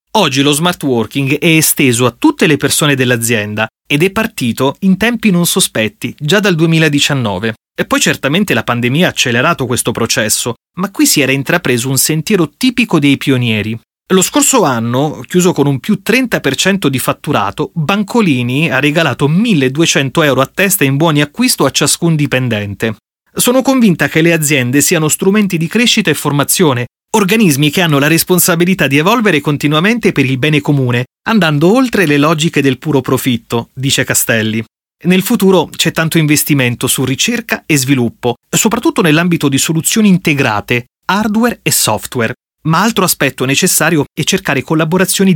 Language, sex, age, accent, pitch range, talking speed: Italian, male, 30-49, native, 130-185 Hz, 155 wpm